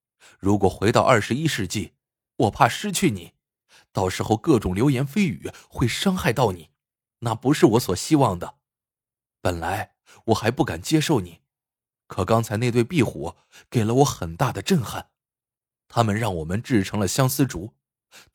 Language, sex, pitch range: Chinese, male, 100-155 Hz